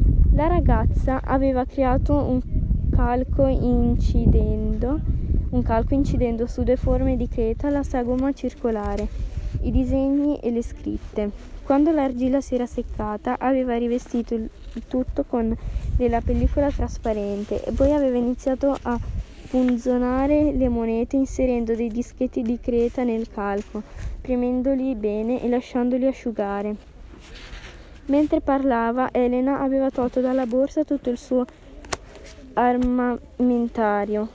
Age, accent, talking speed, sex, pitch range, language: 20-39, native, 115 wpm, female, 220-260 Hz, Italian